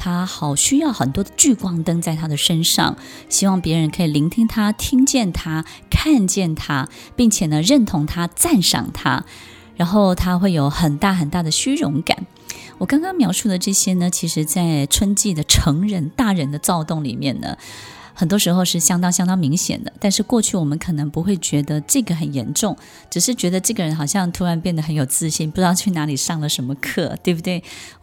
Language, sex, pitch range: Chinese, female, 150-200 Hz